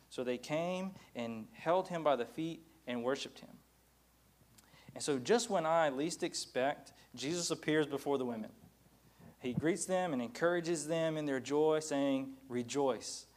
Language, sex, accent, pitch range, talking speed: English, male, American, 125-155 Hz, 155 wpm